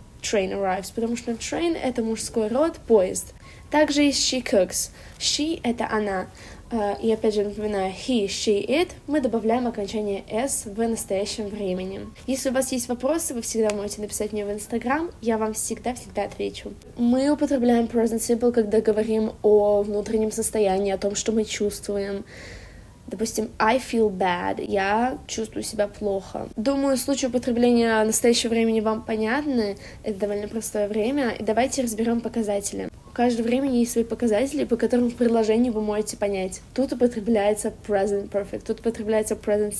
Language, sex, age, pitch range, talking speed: Russian, female, 20-39, 205-245 Hz, 155 wpm